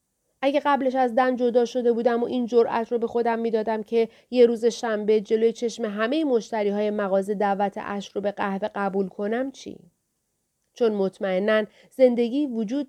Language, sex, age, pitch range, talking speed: Persian, female, 40-59, 190-245 Hz, 170 wpm